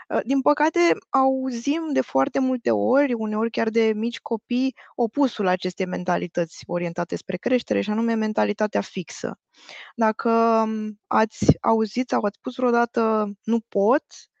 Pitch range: 195-245 Hz